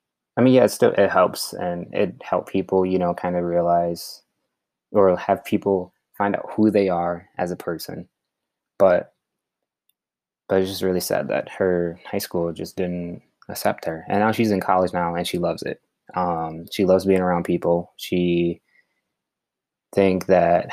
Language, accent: English, American